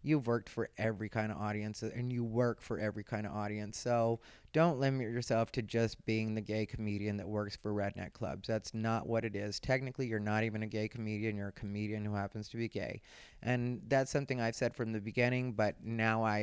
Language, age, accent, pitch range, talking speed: English, 30-49, American, 110-130 Hz, 225 wpm